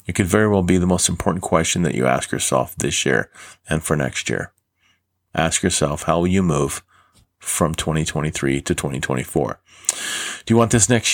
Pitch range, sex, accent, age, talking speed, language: 85-105 Hz, male, American, 40-59, 185 wpm, English